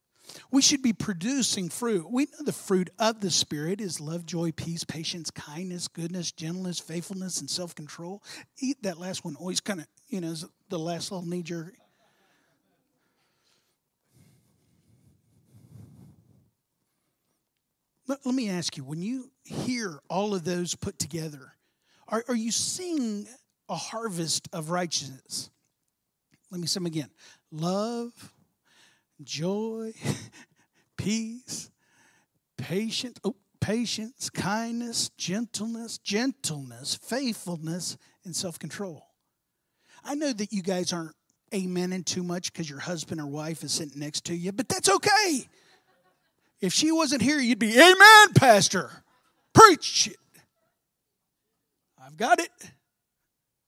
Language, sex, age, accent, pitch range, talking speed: English, male, 50-69, American, 165-230 Hz, 120 wpm